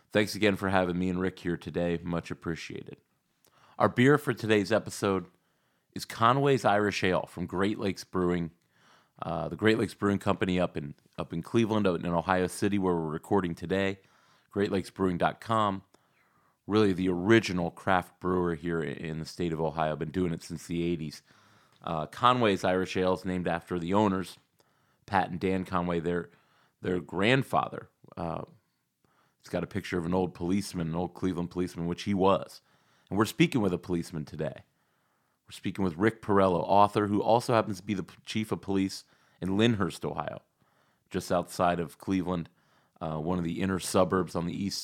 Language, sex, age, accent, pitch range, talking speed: English, male, 30-49, American, 85-105 Hz, 175 wpm